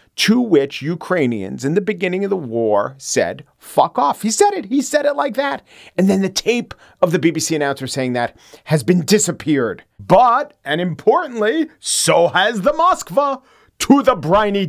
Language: English